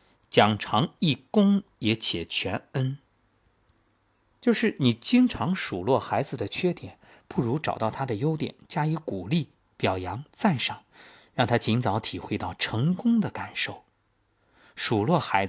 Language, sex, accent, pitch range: Chinese, male, native, 105-140 Hz